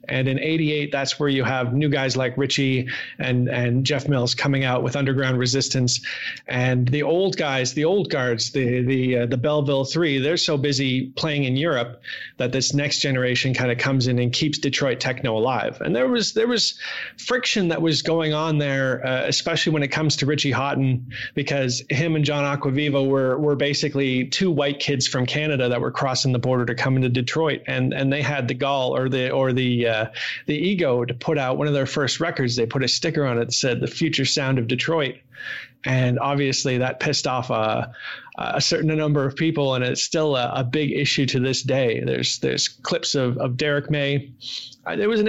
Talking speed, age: 210 wpm, 30-49